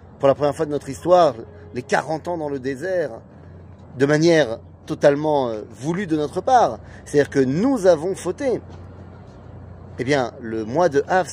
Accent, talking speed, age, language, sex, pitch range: French, 170 wpm, 30-49, French, male, 120-155 Hz